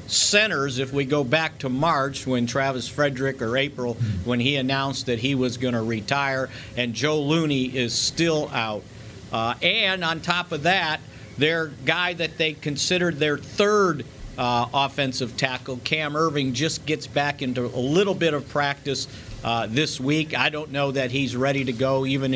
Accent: American